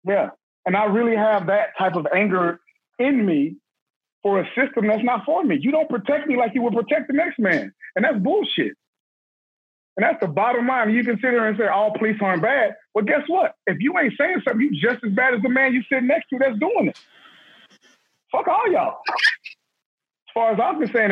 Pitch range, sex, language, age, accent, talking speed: 190-245 Hz, male, English, 30-49, American, 220 wpm